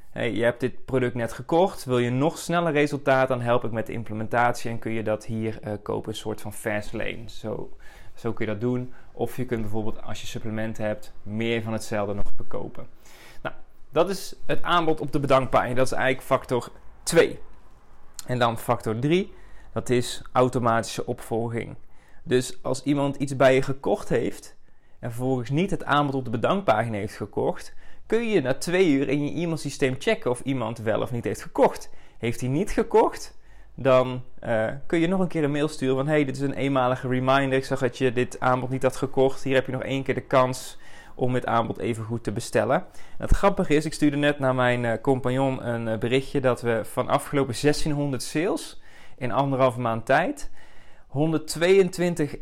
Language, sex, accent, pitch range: Dutch, male, Dutch, 115-140 Hz